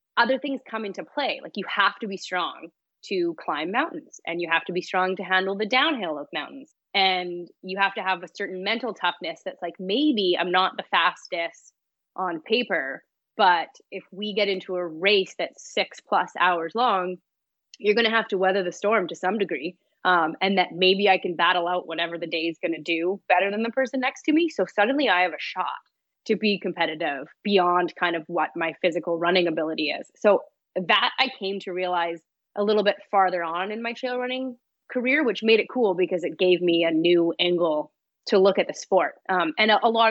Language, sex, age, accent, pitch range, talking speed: English, female, 20-39, American, 175-220 Hz, 215 wpm